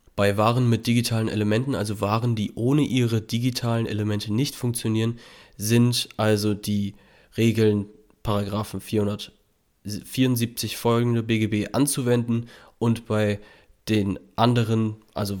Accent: German